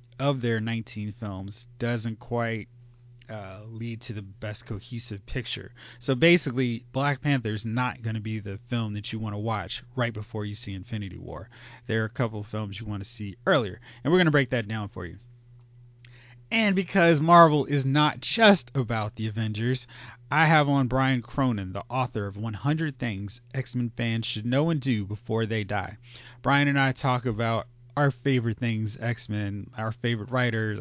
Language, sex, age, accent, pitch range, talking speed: English, male, 30-49, American, 110-130 Hz, 185 wpm